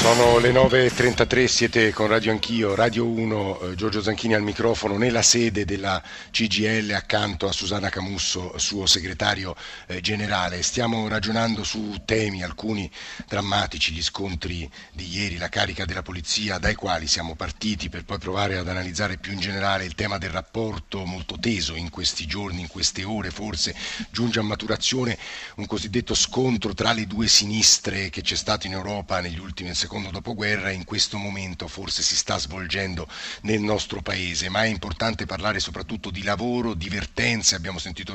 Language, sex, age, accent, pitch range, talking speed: Italian, male, 50-69, native, 90-110 Hz, 165 wpm